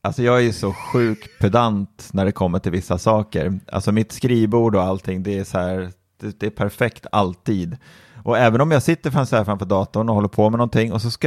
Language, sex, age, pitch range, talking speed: Swedish, male, 30-49, 95-115 Hz, 225 wpm